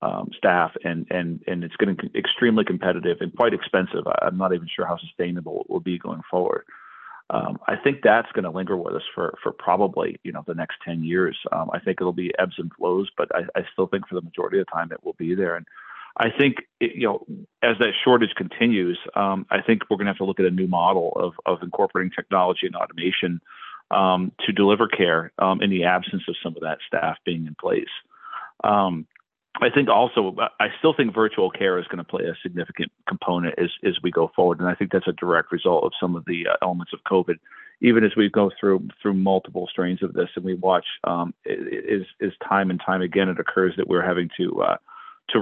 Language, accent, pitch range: English, American, 90-100 Hz